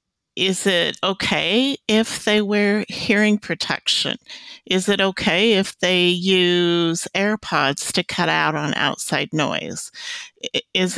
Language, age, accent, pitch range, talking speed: English, 50-69, American, 165-190 Hz, 120 wpm